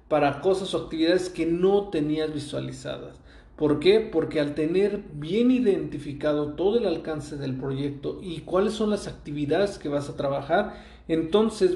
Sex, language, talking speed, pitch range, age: male, Spanish, 155 wpm, 145-185 Hz, 40-59